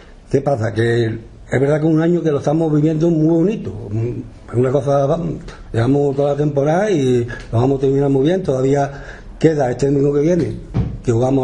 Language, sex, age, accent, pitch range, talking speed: Spanish, male, 60-79, Spanish, 120-165 Hz, 195 wpm